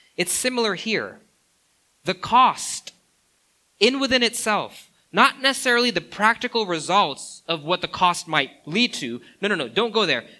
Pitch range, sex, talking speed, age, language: 150-210 Hz, male, 150 wpm, 20-39, English